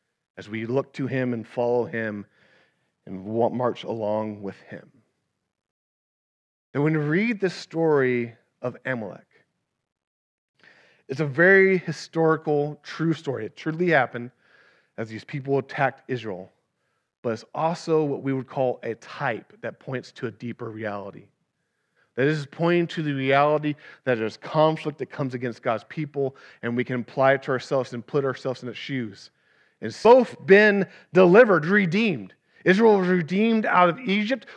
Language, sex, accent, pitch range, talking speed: English, male, American, 140-210 Hz, 155 wpm